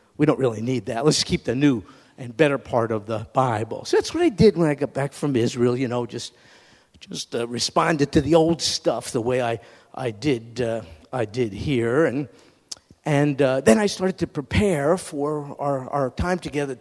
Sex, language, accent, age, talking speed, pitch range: male, English, American, 50-69, 205 wpm, 125-160 Hz